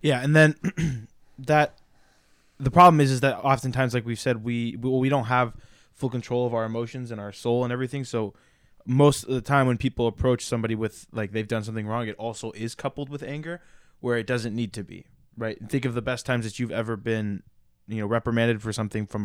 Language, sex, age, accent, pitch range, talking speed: English, male, 20-39, American, 110-125 Hz, 220 wpm